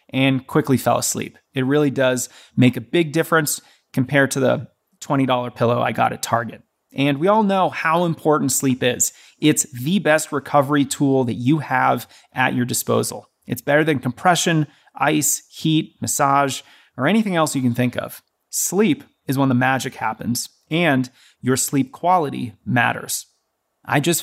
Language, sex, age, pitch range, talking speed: English, male, 30-49, 125-155 Hz, 165 wpm